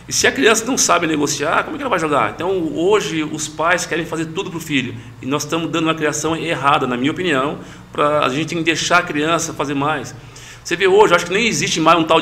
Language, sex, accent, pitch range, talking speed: Portuguese, male, Brazilian, 145-175 Hz, 250 wpm